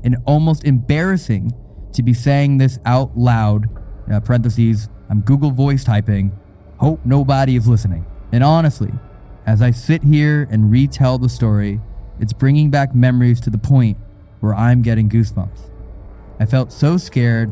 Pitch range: 105-135 Hz